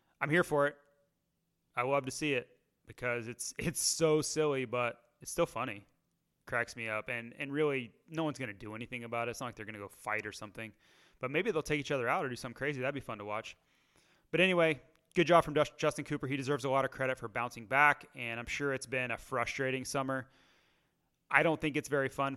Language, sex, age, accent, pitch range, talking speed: English, male, 30-49, American, 115-140 Hz, 235 wpm